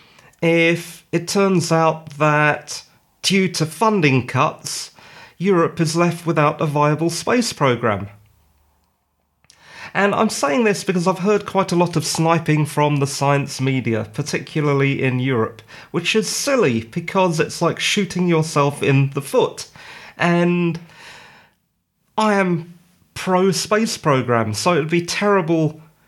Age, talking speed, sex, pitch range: 30-49, 135 wpm, male, 130-175 Hz